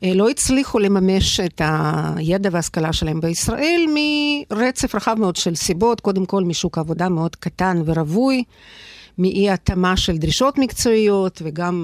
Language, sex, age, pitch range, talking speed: Hebrew, female, 50-69, 170-220 Hz, 125 wpm